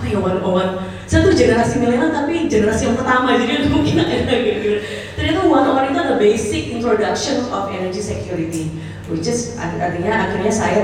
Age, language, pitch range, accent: 20-39, Indonesian, 185-225 Hz, native